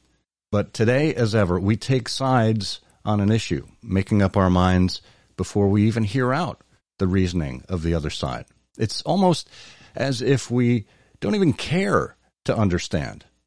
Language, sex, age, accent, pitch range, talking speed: English, male, 50-69, American, 90-115 Hz, 155 wpm